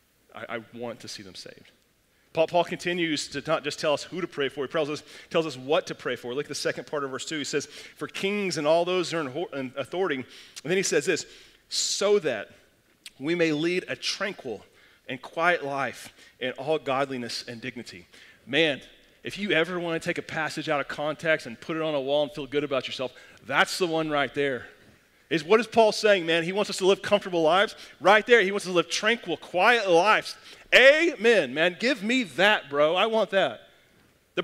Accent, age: American, 40-59